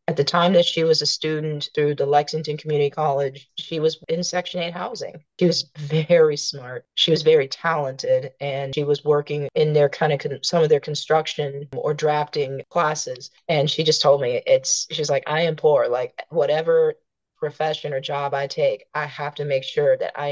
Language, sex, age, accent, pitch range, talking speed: English, female, 30-49, American, 145-175 Hz, 200 wpm